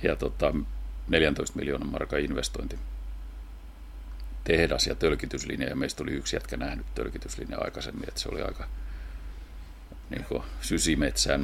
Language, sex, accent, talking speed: Finnish, male, native, 130 wpm